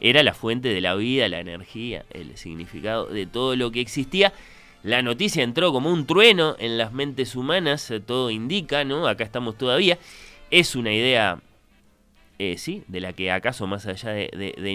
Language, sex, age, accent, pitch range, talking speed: Spanish, male, 20-39, Argentinian, 95-140 Hz, 185 wpm